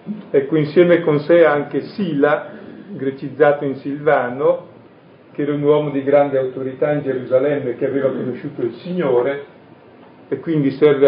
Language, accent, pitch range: Italian, native, 130-165 Hz